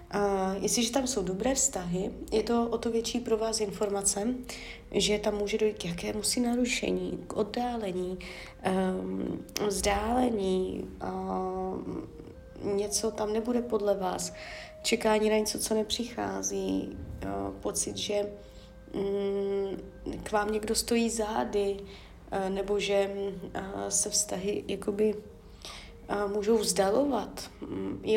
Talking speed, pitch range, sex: 110 wpm, 185-225 Hz, female